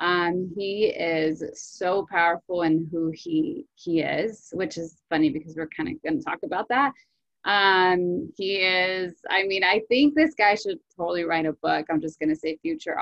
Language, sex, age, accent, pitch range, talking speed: English, female, 20-39, American, 165-230 Hz, 195 wpm